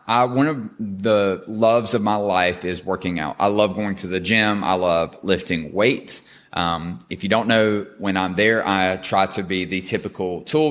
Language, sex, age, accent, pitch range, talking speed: English, male, 20-39, American, 95-120 Hz, 200 wpm